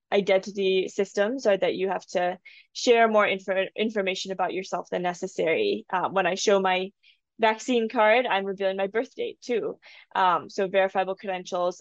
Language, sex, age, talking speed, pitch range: English, female, 20-39, 160 wpm, 185-215 Hz